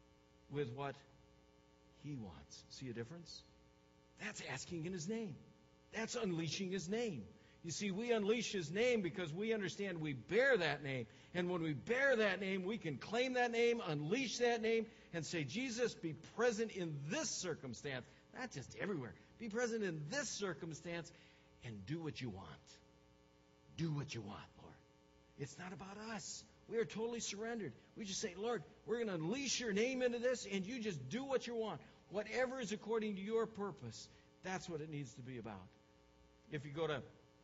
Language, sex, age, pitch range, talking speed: English, male, 60-79, 125-215 Hz, 180 wpm